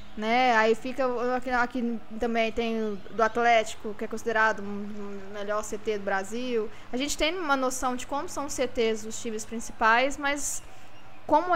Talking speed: 175 wpm